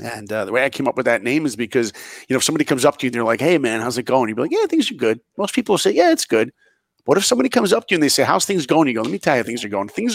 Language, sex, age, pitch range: English, male, 40-59, 115-145 Hz